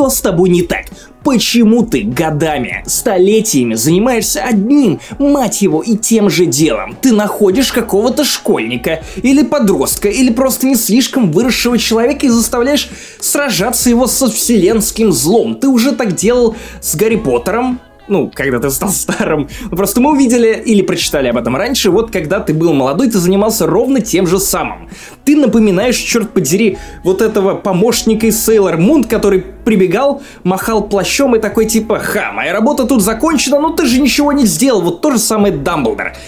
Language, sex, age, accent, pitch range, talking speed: Russian, male, 20-39, native, 180-245 Hz, 165 wpm